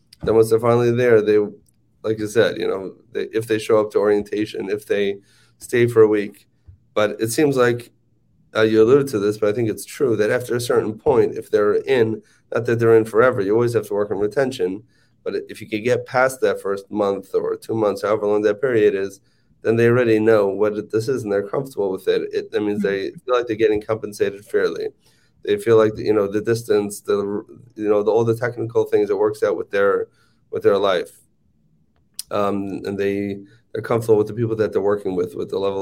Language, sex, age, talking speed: English, male, 30-49, 225 wpm